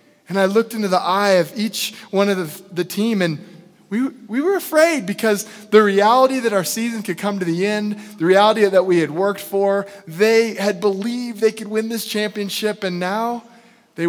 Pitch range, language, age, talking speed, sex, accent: 165-210 Hz, English, 20-39, 200 wpm, male, American